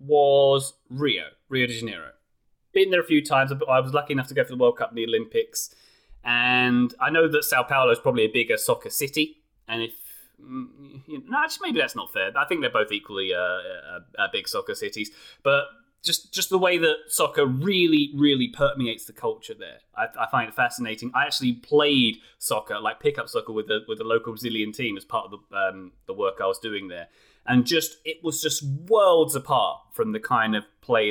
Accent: British